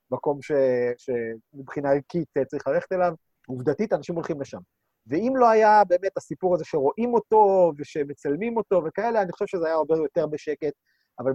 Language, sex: Hebrew, male